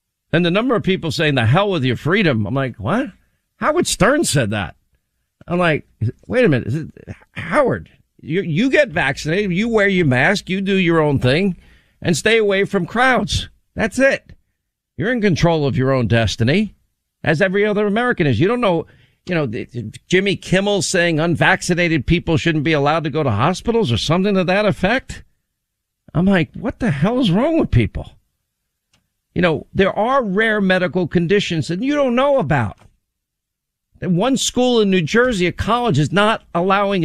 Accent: American